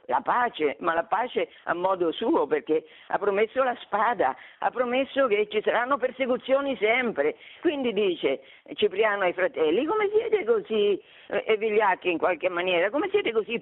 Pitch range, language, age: 215-320 Hz, Italian, 50-69